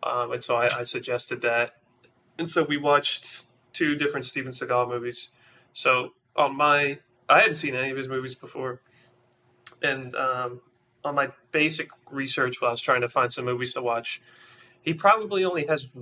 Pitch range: 120-145 Hz